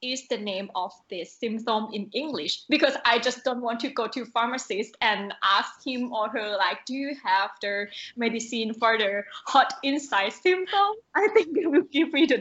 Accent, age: Malaysian, 20-39